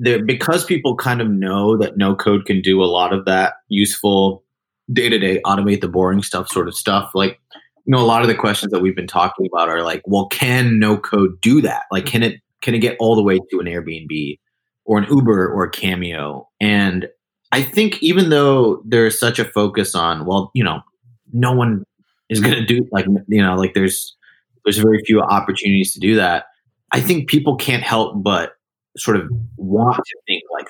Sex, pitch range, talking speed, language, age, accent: male, 90-110 Hz, 205 wpm, English, 30-49, American